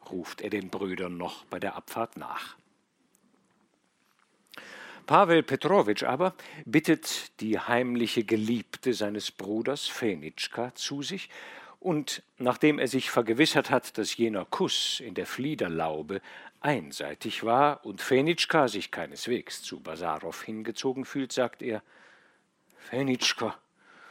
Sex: male